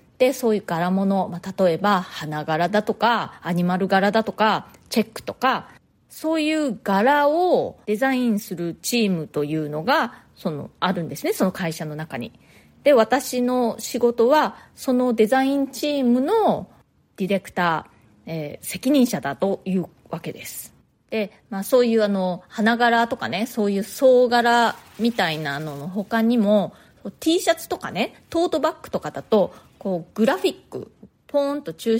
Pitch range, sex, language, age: 180-245 Hz, female, Japanese, 30-49